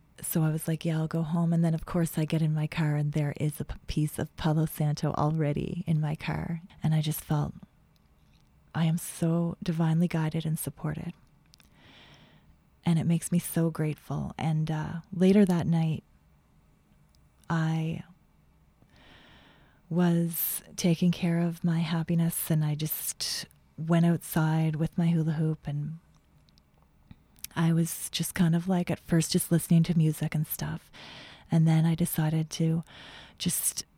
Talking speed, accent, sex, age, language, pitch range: 155 wpm, American, female, 30-49, English, 155-170 Hz